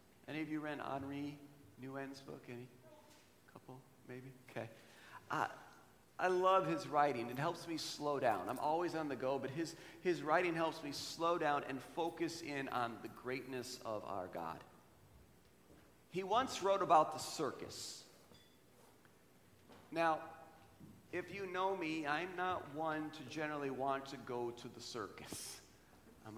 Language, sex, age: English, male, 40-59